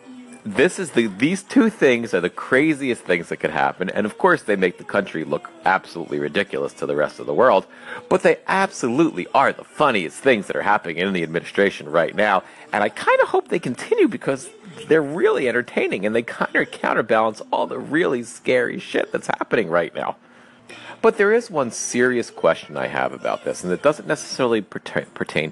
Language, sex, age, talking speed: English, male, 40-59, 200 wpm